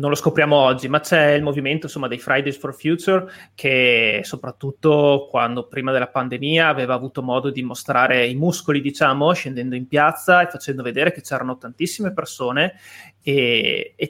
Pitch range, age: 130-160 Hz, 30-49